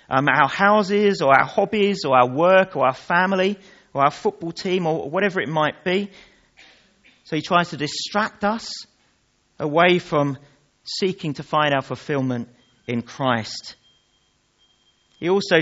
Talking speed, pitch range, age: 145 wpm, 140-195 Hz, 40-59